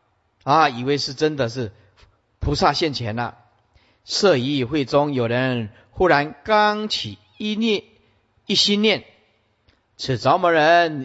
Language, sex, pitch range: Chinese, male, 110-160 Hz